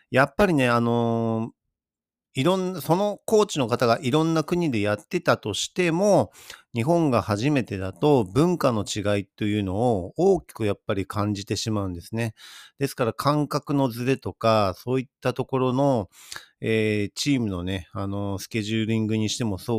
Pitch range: 100-130 Hz